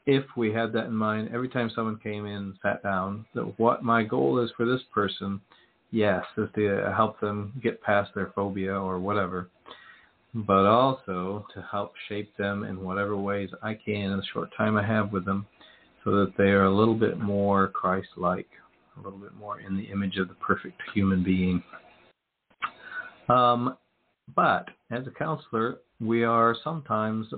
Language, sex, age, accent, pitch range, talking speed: English, male, 50-69, American, 100-110 Hz, 180 wpm